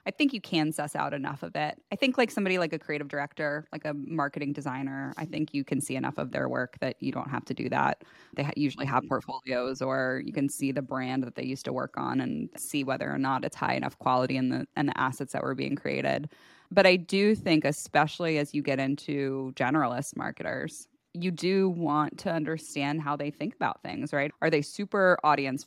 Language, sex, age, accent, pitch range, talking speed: English, female, 20-39, American, 135-165 Hz, 225 wpm